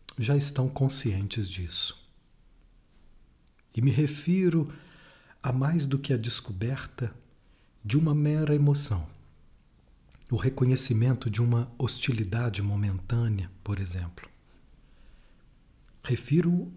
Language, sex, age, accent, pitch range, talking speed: Portuguese, male, 40-59, Brazilian, 100-140 Hz, 95 wpm